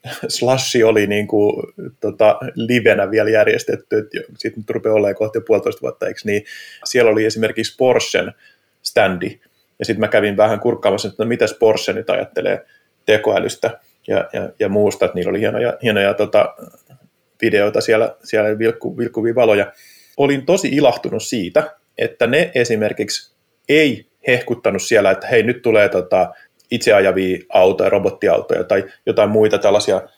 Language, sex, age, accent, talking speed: Finnish, male, 30-49, native, 140 wpm